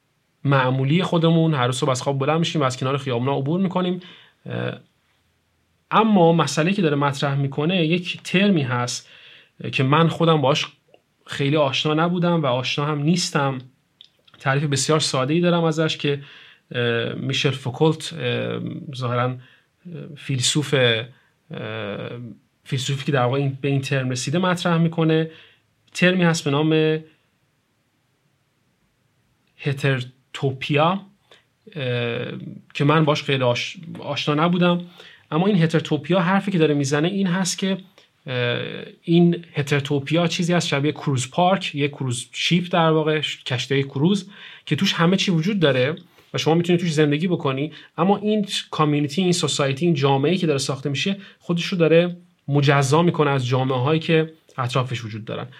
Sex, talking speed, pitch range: male, 135 wpm, 135-170 Hz